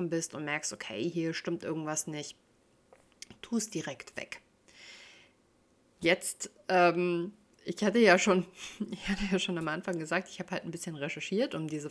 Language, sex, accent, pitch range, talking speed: German, female, German, 160-195 Hz, 165 wpm